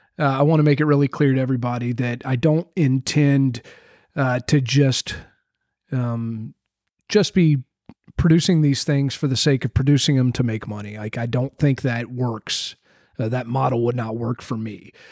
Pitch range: 120-145 Hz